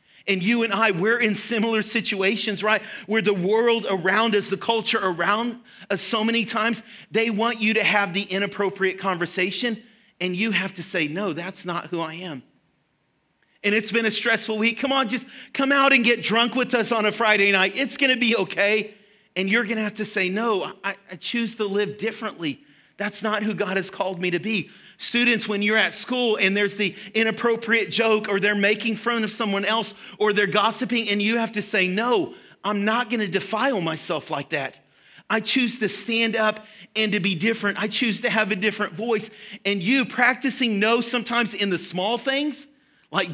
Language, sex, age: English, male, 40-59